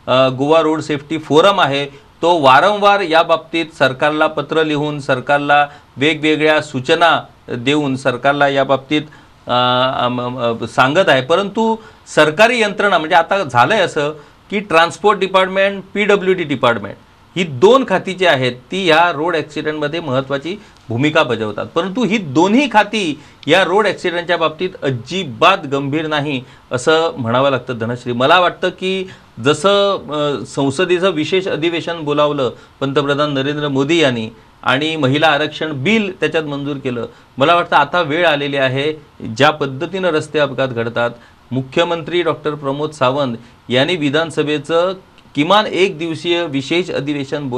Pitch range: 135-175 Hz